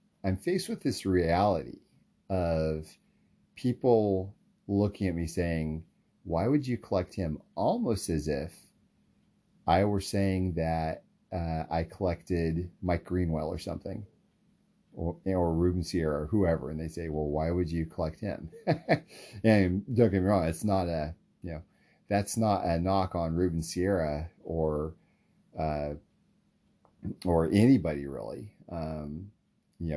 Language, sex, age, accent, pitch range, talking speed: English, male, 40-59, American, 80-105 Hz, 135 wpm